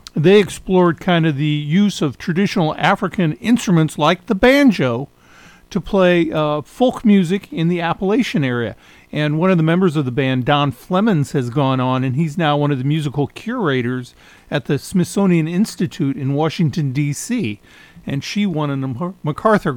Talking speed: 165 wpm